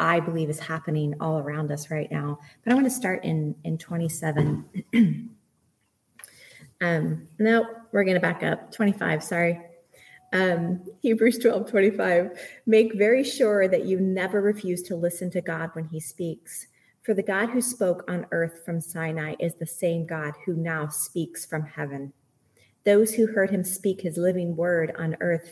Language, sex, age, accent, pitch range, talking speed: English, female, 30-49, American, 165-215 Hz, 170 wpm